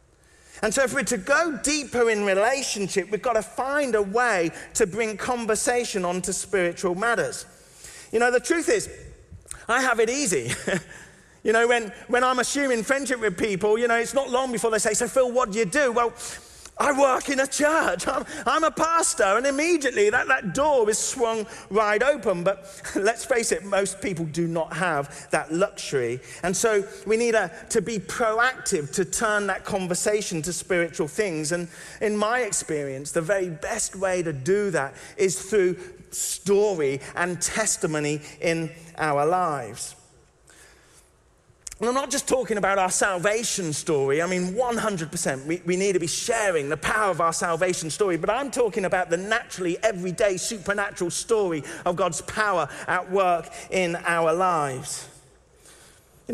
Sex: male